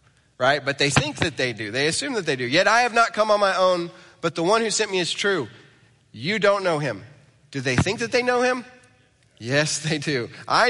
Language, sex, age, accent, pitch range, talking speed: English, male, 30-49, American, 130-170 Hz, 240 wpm